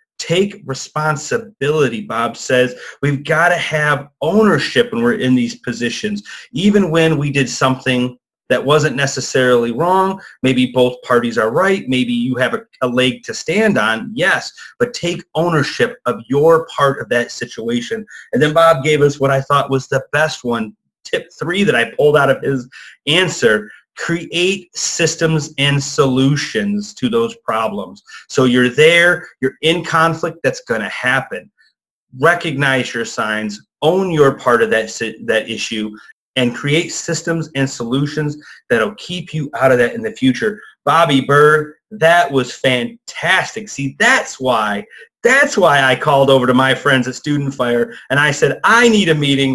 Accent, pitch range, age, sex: American, 130-175 Hz, 30-49, male